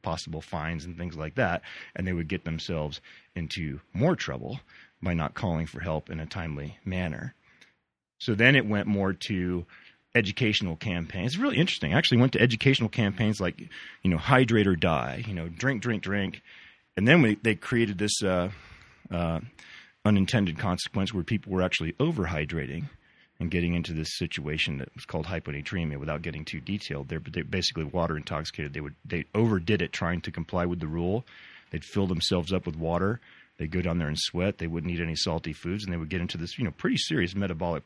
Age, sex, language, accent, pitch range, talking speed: 30-49, male, English, American, 80-105 Hz, 195 wpm